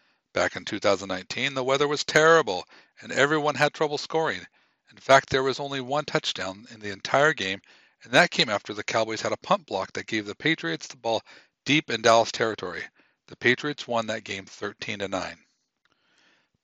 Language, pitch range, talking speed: English, 110-155 Hz, 175 wpm